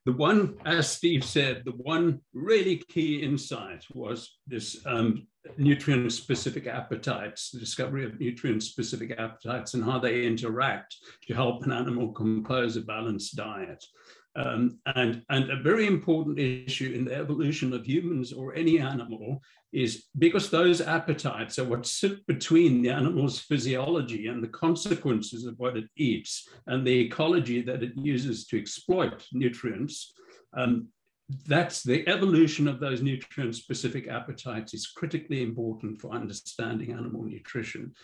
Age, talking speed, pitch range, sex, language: 60-79, 140 wpm, 120-150 Hz, male, English